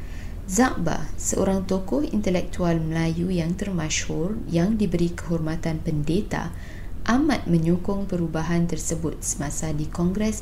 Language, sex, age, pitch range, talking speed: Malay, female, 20-39, 150-180 Hz, 105 wpm